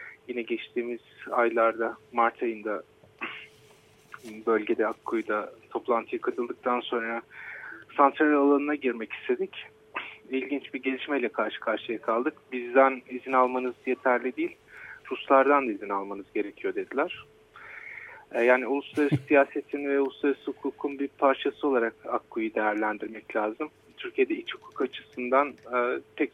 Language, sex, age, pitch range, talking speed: Turkish, male, 40-59, 120-140 Hz, 110 wpm